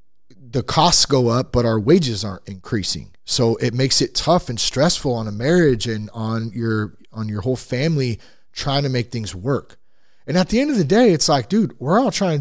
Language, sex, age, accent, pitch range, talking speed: English, male, 30-49, American, 120-175 Hz, 215 wpm